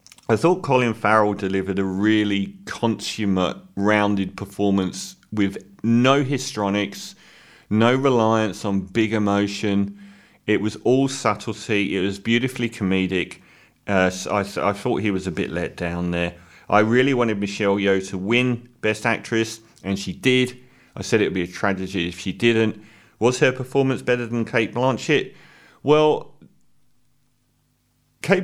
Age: 30-49